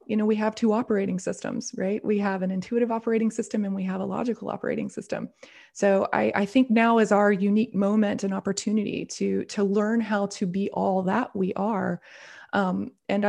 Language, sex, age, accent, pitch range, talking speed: English, female, 20-39, American, 195-245 Hz, 200 wpm